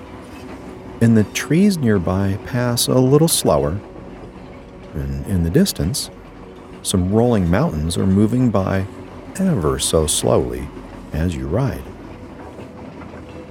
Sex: male